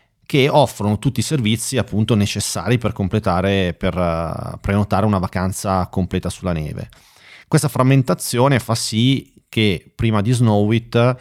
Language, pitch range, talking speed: Italian, 95-120 Hz, 130 wpm